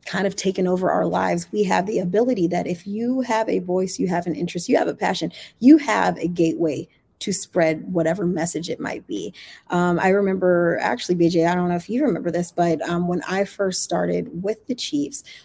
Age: 30-49